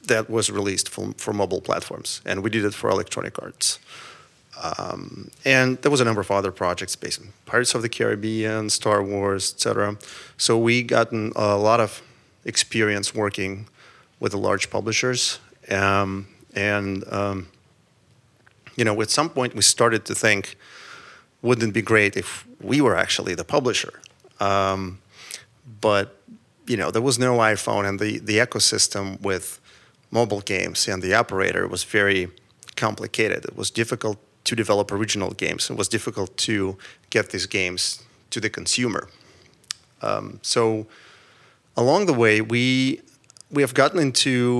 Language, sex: Swedish, male